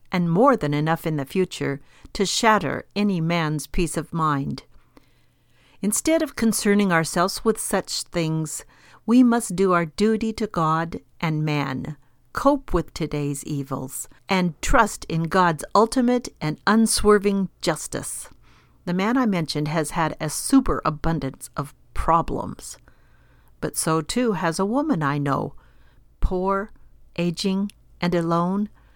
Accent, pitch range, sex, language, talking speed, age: American, 150-210 Hz, female, English, 135 wpm, 50-69